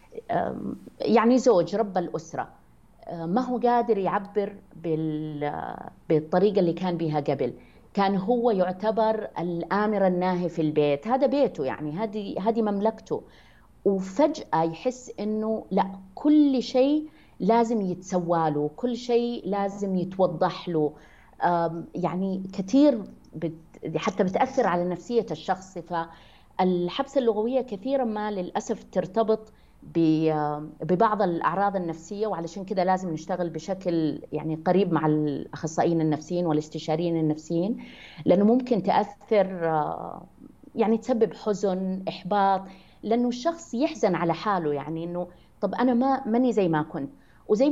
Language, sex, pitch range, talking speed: Arabic, female, 165-220 Hz, 110 wpm